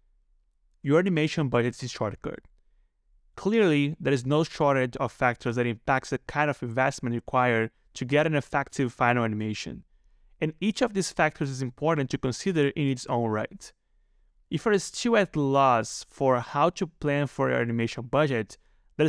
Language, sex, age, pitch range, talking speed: English, male, 20-39, 125-155 Hz, 165 wpm